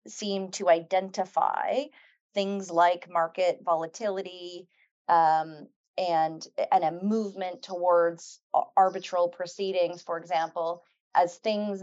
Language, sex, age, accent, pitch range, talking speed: English, female, 30-49, American, 165-195 Hz, 95 wpm